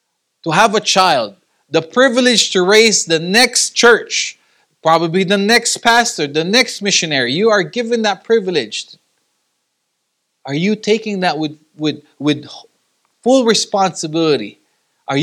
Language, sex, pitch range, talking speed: English, male, 155-230 Hz, 125 wpm